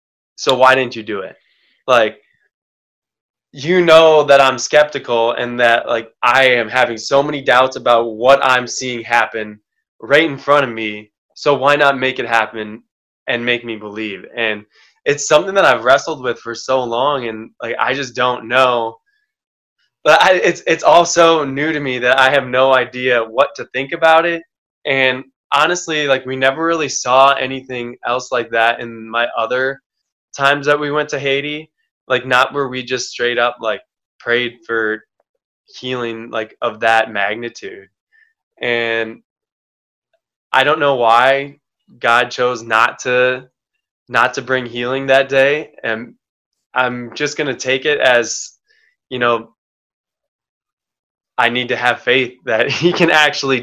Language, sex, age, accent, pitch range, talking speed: English, male, 20-39, American, 120-140 Hz, 160 wpm